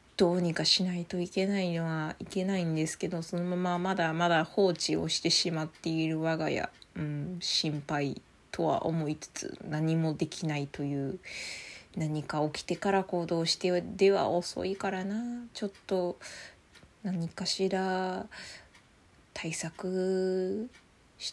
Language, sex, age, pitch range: Japanese, female, 20-39, 160-195 Hz